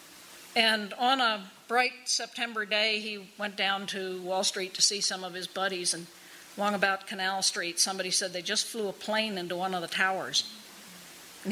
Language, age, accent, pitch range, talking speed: English, 50-69, American, 190-245 Hz, 190 wpm